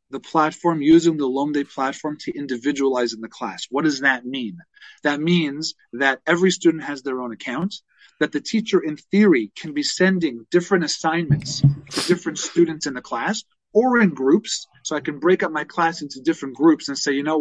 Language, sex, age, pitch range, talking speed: English, male, 40-59, 145-185 Hz, 195 wpm